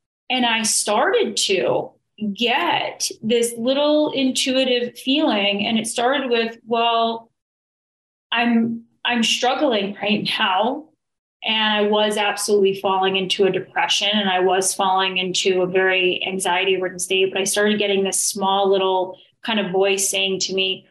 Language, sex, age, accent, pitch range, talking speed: English, female, 30-49, American, 195-240 Hz, 145 wpm